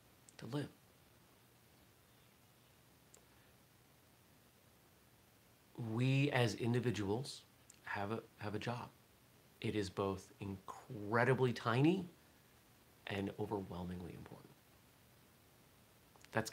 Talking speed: 65 wpm